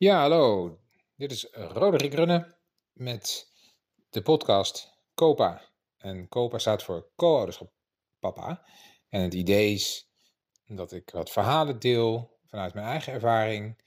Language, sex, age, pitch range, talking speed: Dutch, male, 40-59, 100-130 Hz, 125 wpm